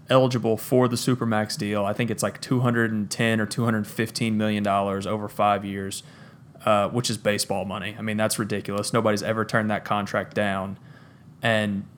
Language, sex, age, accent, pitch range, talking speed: English, male, 30-49, American, 105-125 Hz, 165 wpm